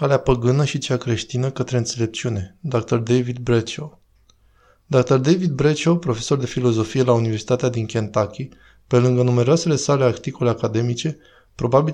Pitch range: 115-135 Hz